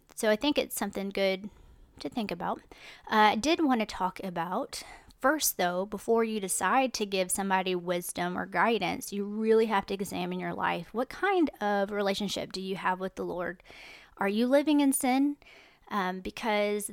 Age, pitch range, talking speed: 30-49, 190-235 Hz, 180 wpm